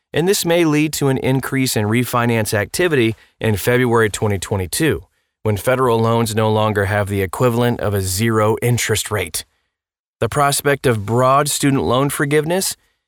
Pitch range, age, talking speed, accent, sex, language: 105-135 Hz, 30-49, 150 wpm, American, male, English